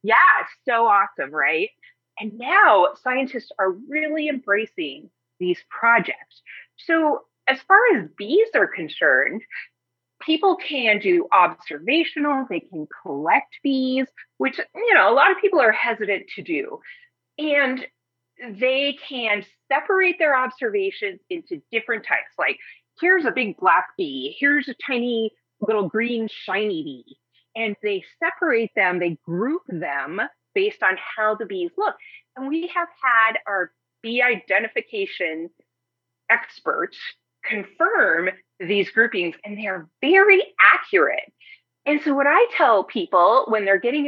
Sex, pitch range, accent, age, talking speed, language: female, 195-320 Hz, American, 30-49, 135 wpm, English